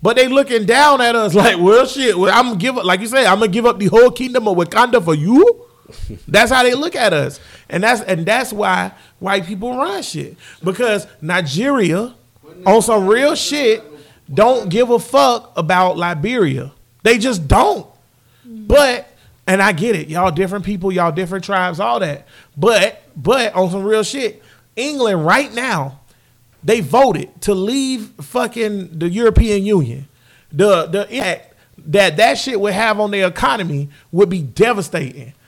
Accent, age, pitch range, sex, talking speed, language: American, 30-49, 175-240 Hz, male, 170 wpm, English